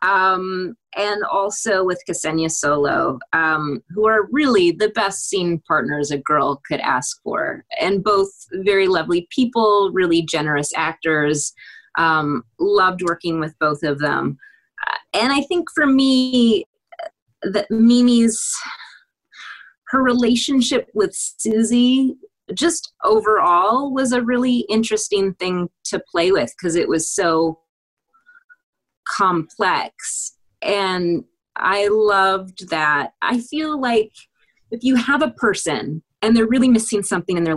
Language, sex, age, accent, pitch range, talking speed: English, female, 20-39, American, 170-245 Hz, 125 wpm